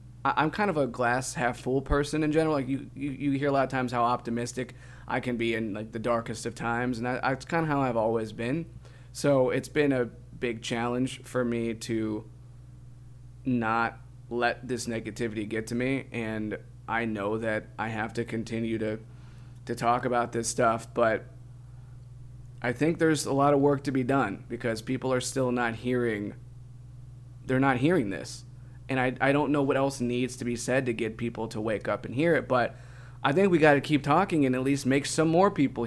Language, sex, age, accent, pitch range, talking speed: English, male, 20-39, American, 120-130 Hz, 205 wpm